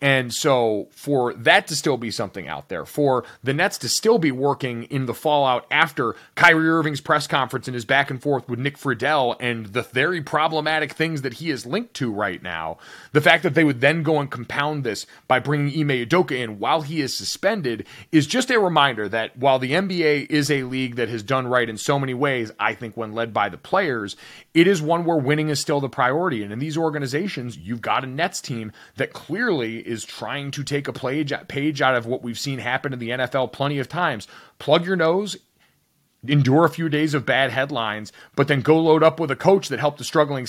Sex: male